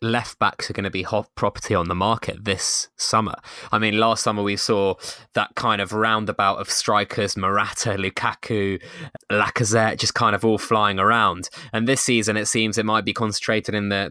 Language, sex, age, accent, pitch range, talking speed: English, male, 20-39, British, 105-125 Hz, 185 wpm